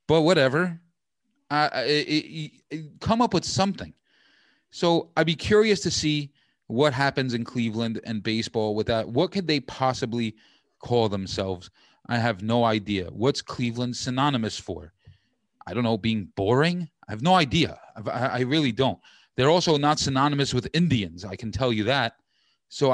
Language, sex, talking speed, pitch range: English, male, 165 wpm, 110-145 Hz